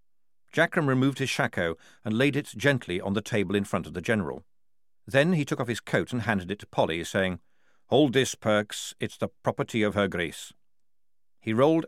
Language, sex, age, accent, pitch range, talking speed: English, male, 50-69, British, 100-140 Hz, 195 wpm